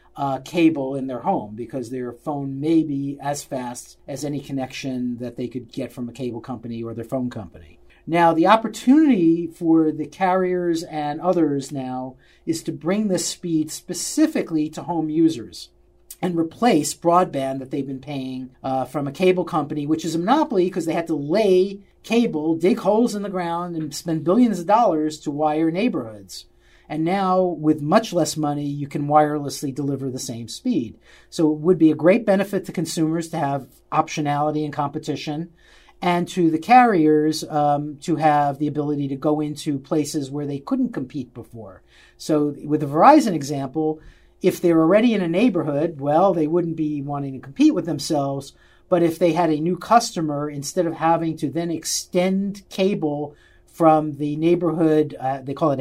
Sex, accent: male, American